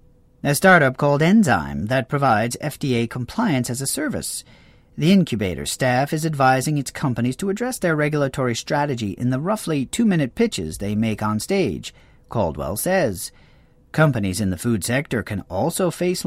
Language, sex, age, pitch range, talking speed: English, male, 40-59, 115-170 Hz, 155 wpm